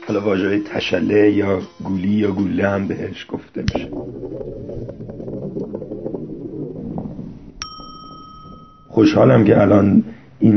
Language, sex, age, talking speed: Persian, male, 50-69, 85 wpm